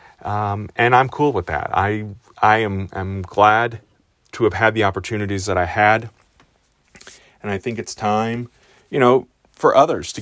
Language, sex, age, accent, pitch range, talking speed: English, male, 30-49, American, 95-115 Hz, 170 wpm